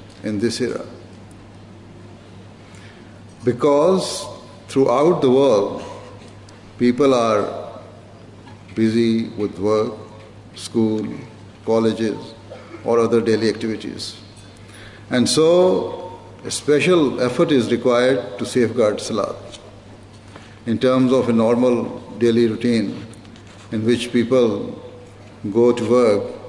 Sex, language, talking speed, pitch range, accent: male, English, 95 wpm, 105-120 Hz, Indian